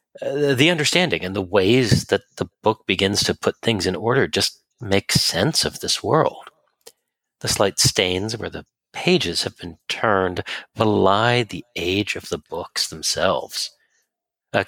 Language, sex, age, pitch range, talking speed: English, male, 40-59, 105-150 Hz, 155 wpm